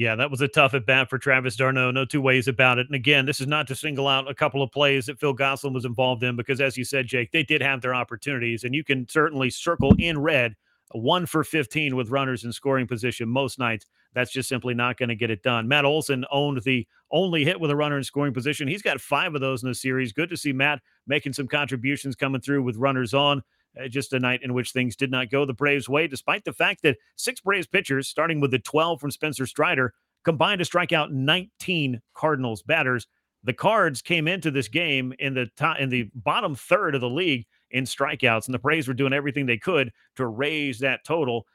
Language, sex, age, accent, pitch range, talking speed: English, male, 40-59, American, 125-150 Hz, 235 wpm